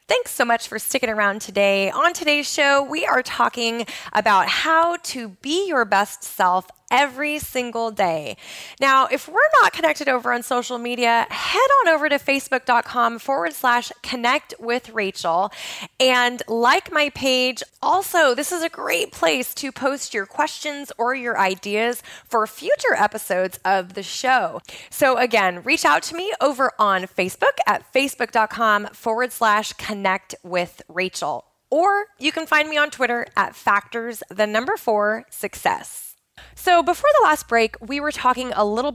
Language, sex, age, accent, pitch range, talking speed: English, female, 20-39, American, 210-285 Hz, 160 wpm